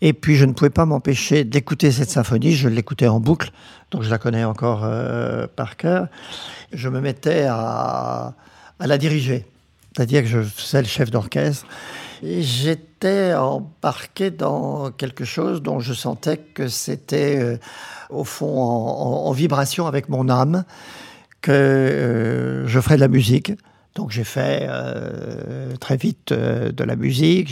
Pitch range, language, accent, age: 115-145 Hz, French, French, 50-69